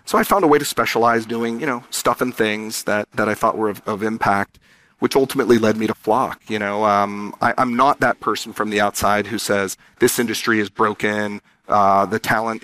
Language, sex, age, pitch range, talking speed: English, male, 40-59, 105-120 Hz, 225 wpm